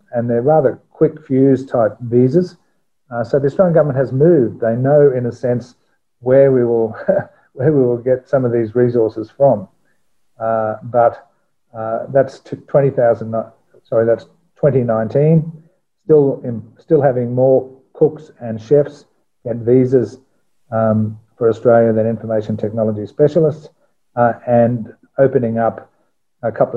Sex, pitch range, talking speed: male, 110-130 Hz, 140 wpm